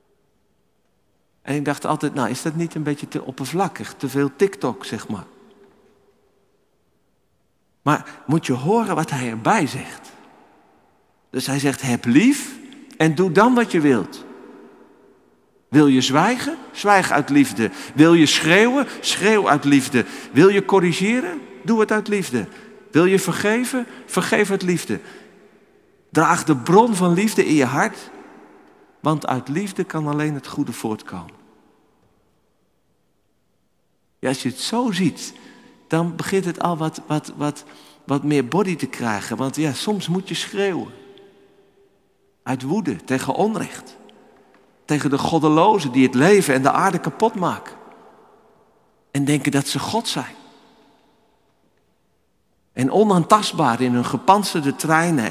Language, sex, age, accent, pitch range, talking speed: Dutch, male, 50-69, Dutch, 140-205 Hz, 140 wpm